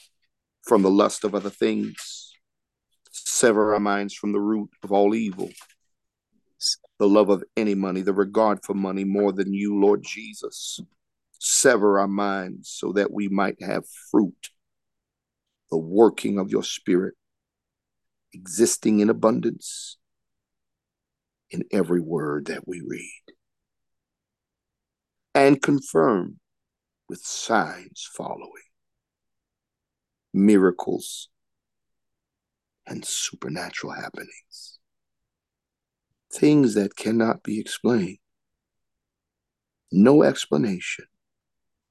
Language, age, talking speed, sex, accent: English, 50-69, 95 wpm, male, American